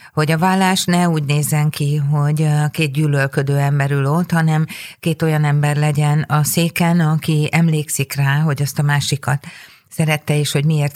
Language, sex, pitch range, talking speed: Hungarian, female, 145-160 Hz, 165 wpm